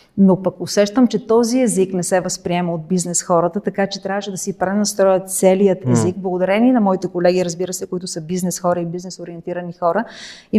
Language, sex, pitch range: Bulgarian, female, 175-195 Hz